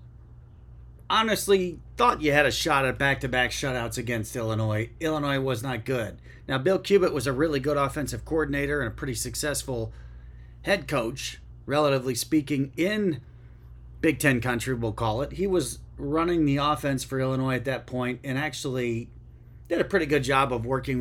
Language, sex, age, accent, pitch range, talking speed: English, male, 30-49, American, 110-150 Hz, 165 wpm